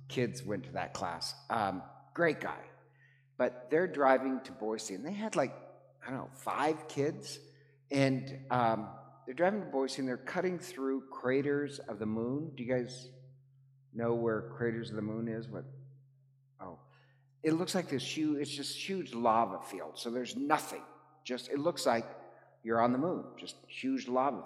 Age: 50-69